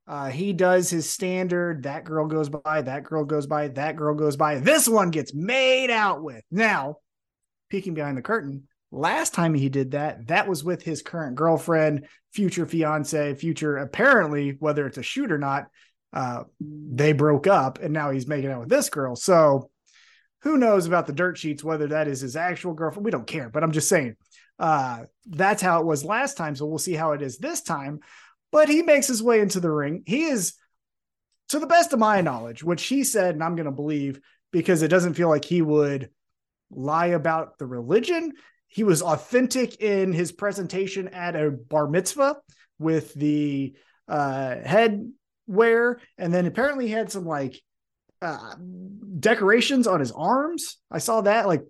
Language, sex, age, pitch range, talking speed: English, male, 30-49, 150-210 Hz, 190 wpm